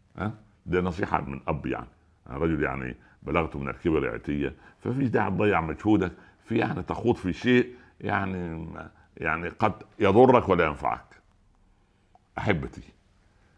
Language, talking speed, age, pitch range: Arabic, 125 wpm, 60-79, 85-110 Hz